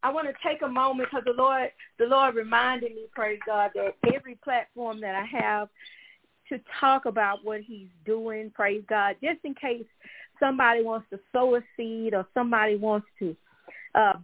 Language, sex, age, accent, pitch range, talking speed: English, female, 40-59, American, 210-265 Hz, 180 wpm